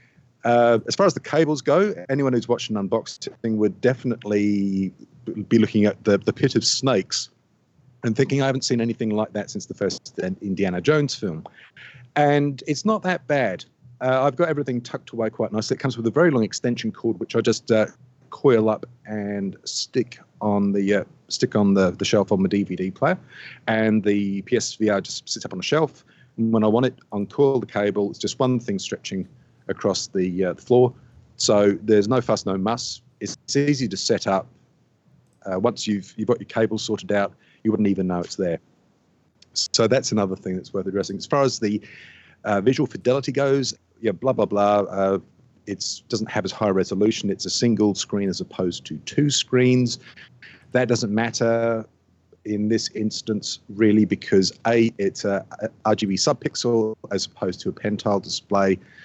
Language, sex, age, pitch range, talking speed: English, male, 40-59, 100-125 Hz, 185 wpm